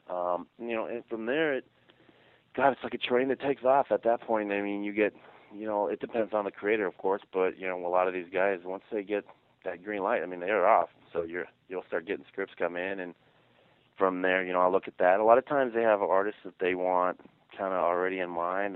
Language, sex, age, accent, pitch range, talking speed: English, male, 30-49, American, 90-110 Hz, 260 wpm